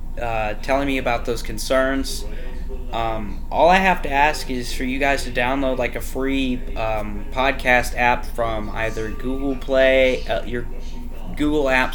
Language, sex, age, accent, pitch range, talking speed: English, male, 20-39, American, 115-135 Hz, 160 wpm